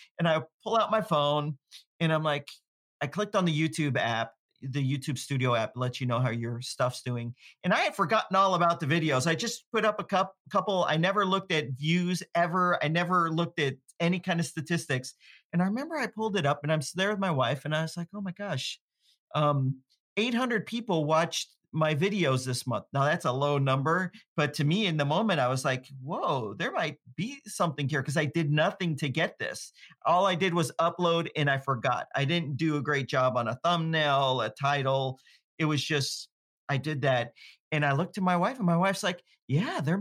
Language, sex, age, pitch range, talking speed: English, male, 40-59, 140-200 Hz, 220 wpm